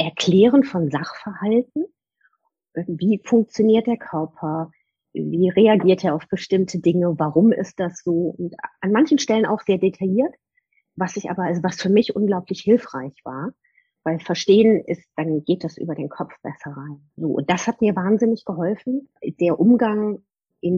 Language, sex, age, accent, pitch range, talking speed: German, female, 30-49, German, 170-215 Hz, 160 wpm